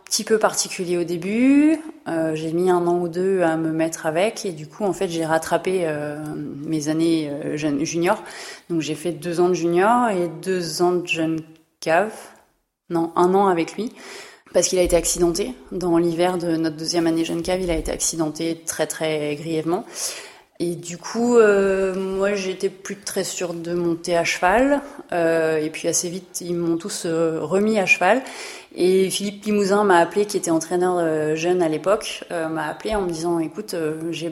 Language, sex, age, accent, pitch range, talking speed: French, female, 30-49, French, 165-195 Hz, 195 wpm